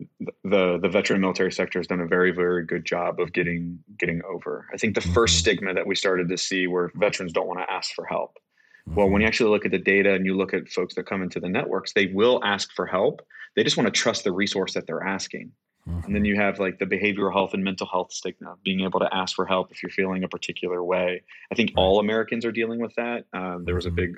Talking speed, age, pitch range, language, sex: 260 wpm, 30-49, 90-95 Hz, English, male